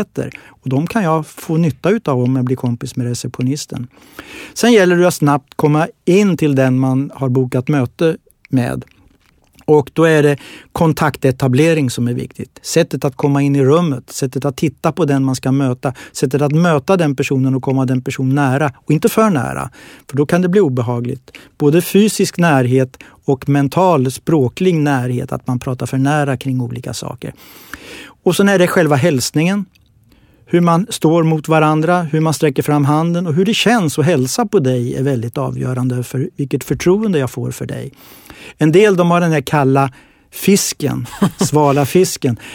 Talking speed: 180 wpm